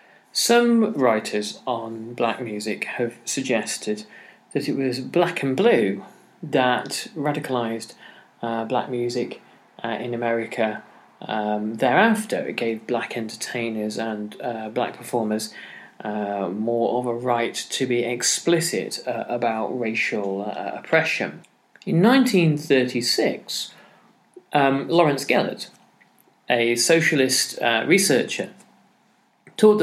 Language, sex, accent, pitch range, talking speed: English, male, British, 115-140 Hz, 105 wpm